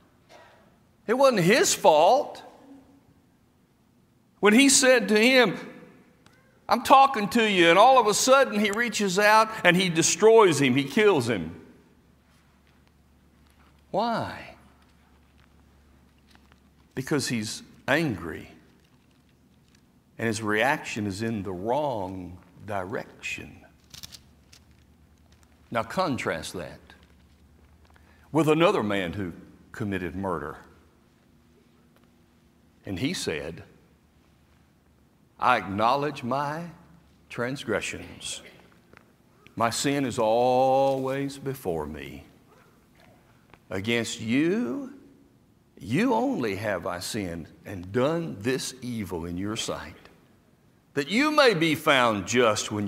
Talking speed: 95 wpm